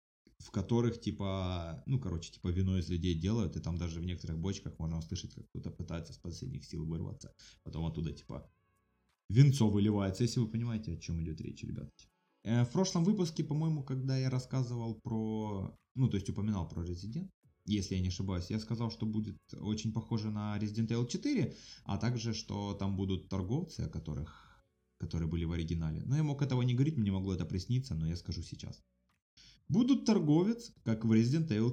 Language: Russian